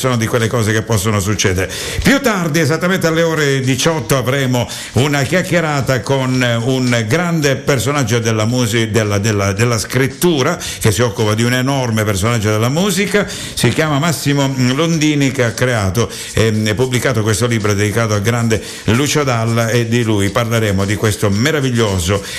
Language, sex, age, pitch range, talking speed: Italian, male, 60-79, 110-135 Hz, 160 wpm